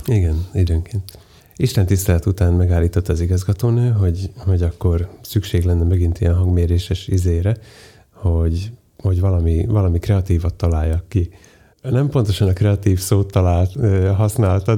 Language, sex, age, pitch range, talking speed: Hungarian, male, 30-49, 85-100 Hz, 120 wpm